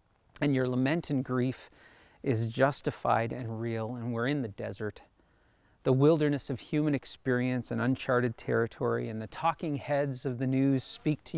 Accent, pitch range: American, 120-155 Hz